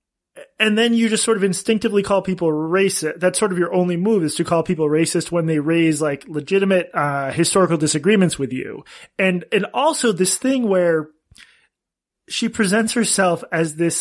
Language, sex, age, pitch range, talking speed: English, male, 20-39, 155-215 Hz, 180 wpm